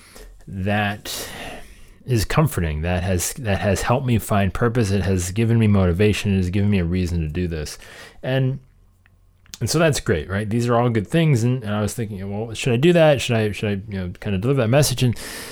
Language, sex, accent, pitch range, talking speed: English, male, American, 95-120 Hz, 225 wpm